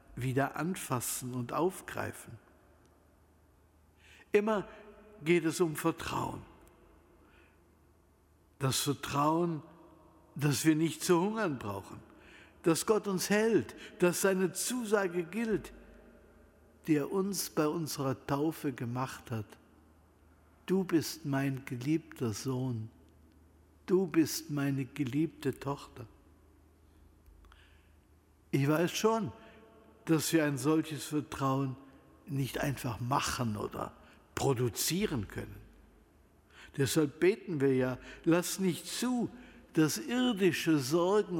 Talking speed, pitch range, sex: 95 wpm, 105-165 Hz, male